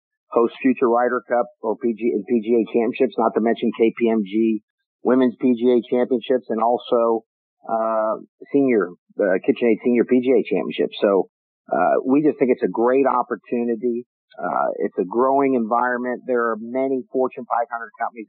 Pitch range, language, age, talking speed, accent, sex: 115-130 Hz, English, 50-69, 150 wpm, American, male